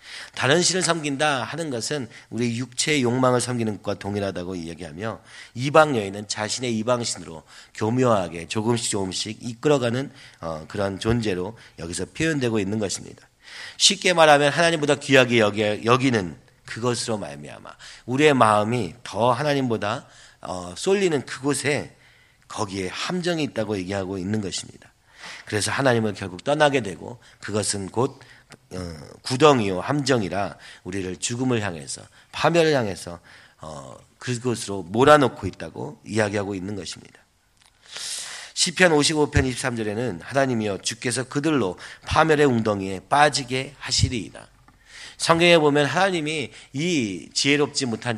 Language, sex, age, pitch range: Korean, male, 40-59, 105-145 Hz